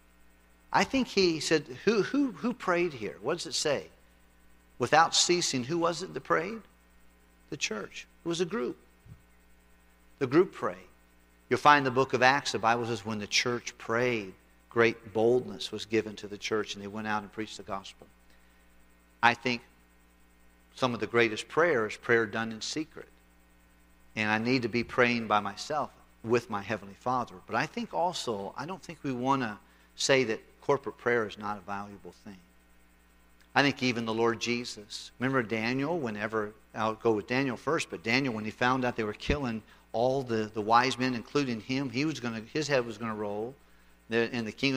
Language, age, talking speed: English, 50-69, 190 wpm